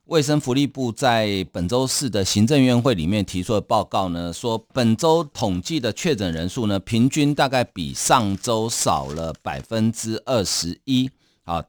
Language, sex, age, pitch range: Chinese, male, 50-69, 95-130 Hz